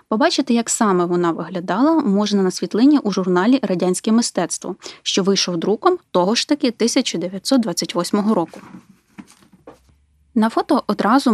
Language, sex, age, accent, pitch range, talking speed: Ukrainian, female, 20-39, native, 180-250 Hz, 120 wpm